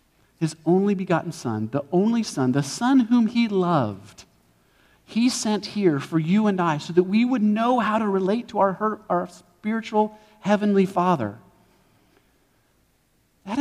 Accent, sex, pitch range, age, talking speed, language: American, male, 140-210 Hz, 40-59, 150 wpm, English